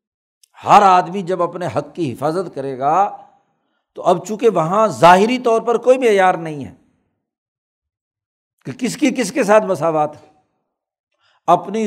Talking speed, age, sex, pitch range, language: 140 wpm, 60-79, male, 160-215 Hz, Urdu